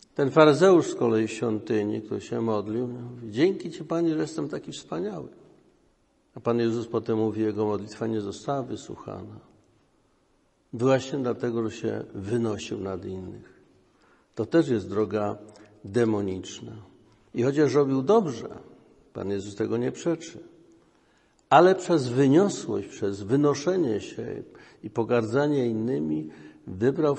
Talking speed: 130 wpm